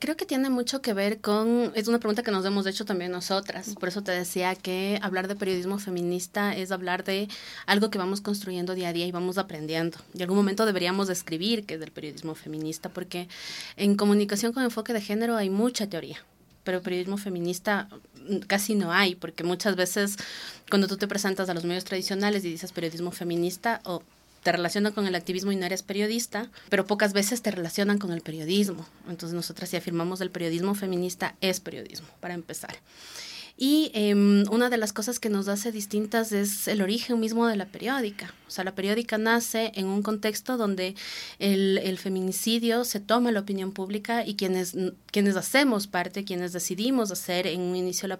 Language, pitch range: Spanish, 180-215 Hz